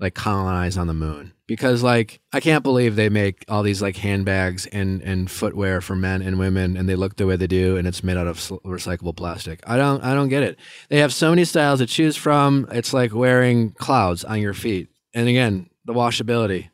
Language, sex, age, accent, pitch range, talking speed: English, male, 20-39, American, 105-145 Hz, 220 wpm